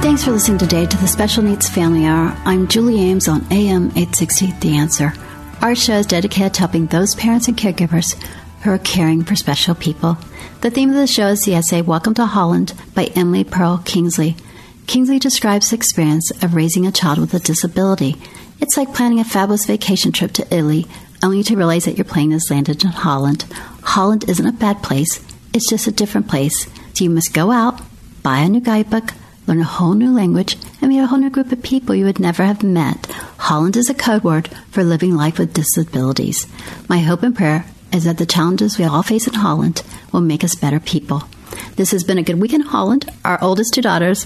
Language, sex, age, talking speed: English, female, 60-79, 210 wpm